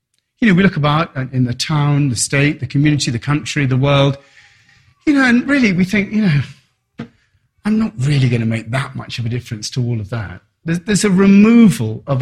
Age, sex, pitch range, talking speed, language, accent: 40-59, male, 125-185 Hz, 215 wpm, English, British